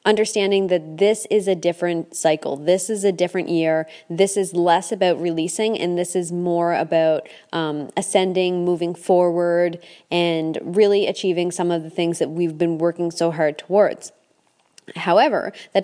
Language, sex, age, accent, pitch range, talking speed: English, female, 20-39, American, 170-200 Hz, 160 wpm